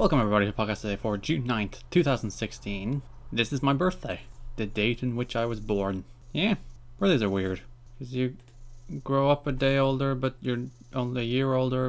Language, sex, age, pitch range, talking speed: English, male, 20-39, 105-125 Hz, 185 wpm